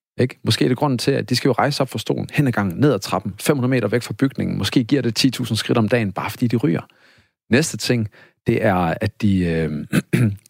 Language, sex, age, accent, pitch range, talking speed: Danish, male, 40-59, native, 105-125 Hz, 245 wpm